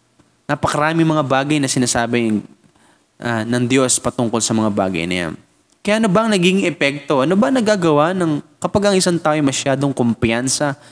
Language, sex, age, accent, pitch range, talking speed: Filipino, male, 20-39, native, 105-140 Hz, 175 wpm